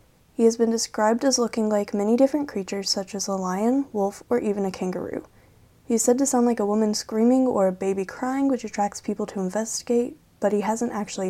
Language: English